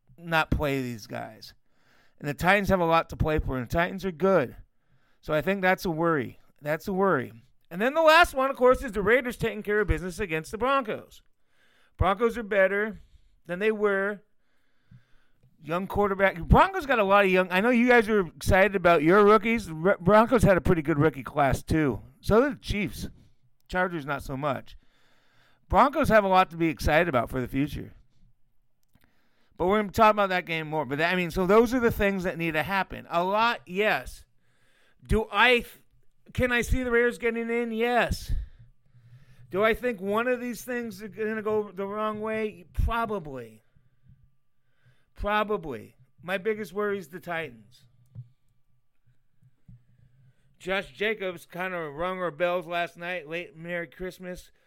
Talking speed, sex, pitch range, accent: 175 wpm, male, 135-210 Hz, American